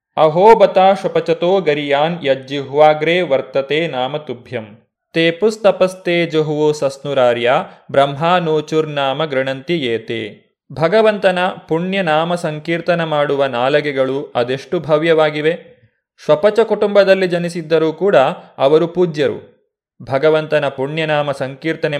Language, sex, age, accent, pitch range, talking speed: Kannada, male, 30-49, native, 145-180 Hz, 75 wpm